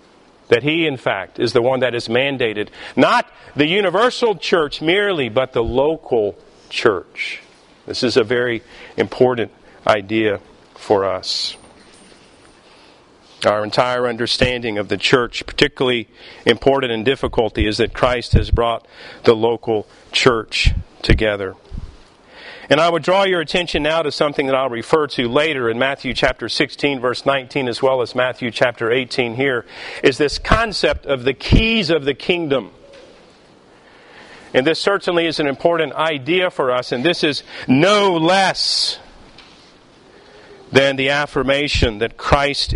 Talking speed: 140 wpm